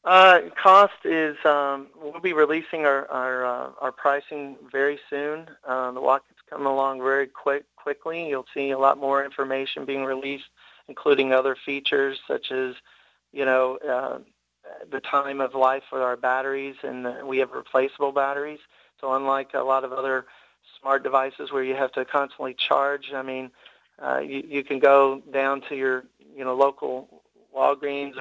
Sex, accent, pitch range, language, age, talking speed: male, American, 130-140 Hz, English, 40-59, 170 wpm